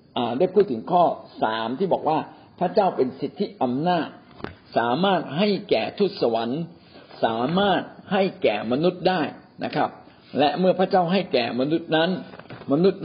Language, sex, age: Thai, male, 60-79